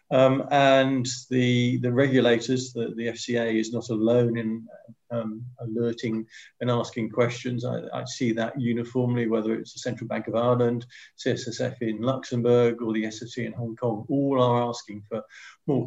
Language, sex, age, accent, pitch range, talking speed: English, male, 50-69, British, 115-135 Hz, 165 wpm